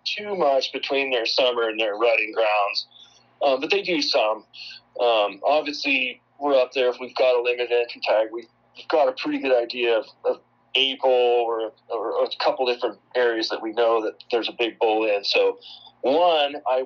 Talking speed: 190 wpm